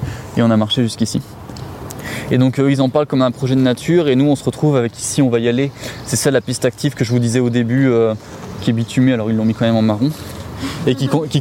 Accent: French